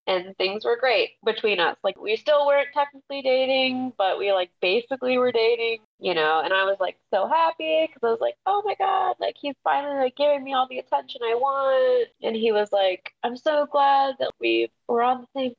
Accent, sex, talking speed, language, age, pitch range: American, female, 220 wpm, English, 20-39, 190-270 Hz